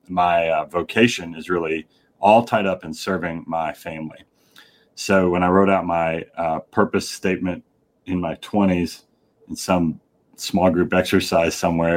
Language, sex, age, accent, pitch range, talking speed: English, male, 30-49, American, 85-100 Hz, 150 wpm